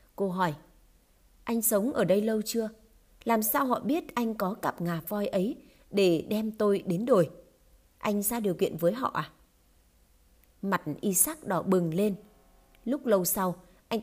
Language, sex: Vietnamese, female